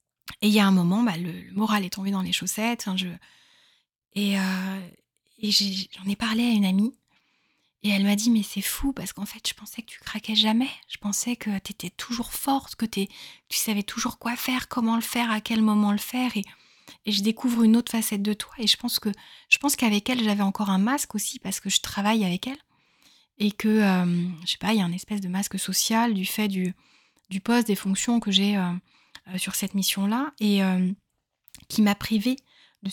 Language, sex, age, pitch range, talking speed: French, female, 20-39, 195-230 Hz, 230 wpm